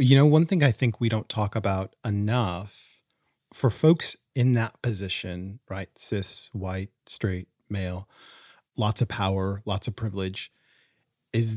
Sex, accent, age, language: male, American, 30-49, English